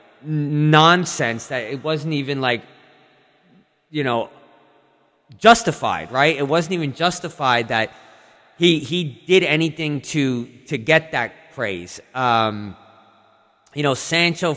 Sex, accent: male, American